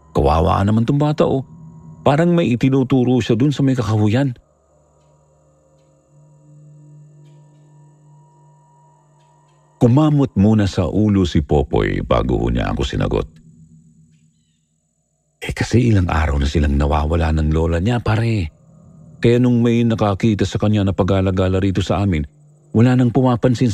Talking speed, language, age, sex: 120 wpm, Filipino, 50-69, male